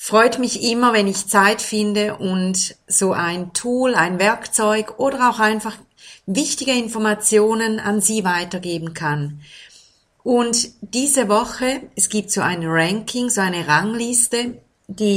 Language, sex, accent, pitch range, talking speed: German, female, German, 190-235 Hz, 135 wpm